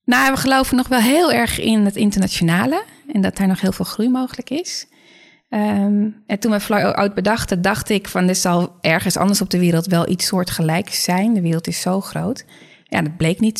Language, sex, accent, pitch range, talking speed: Dutch, female, Dutch, 175-215 Hz, 215 wpm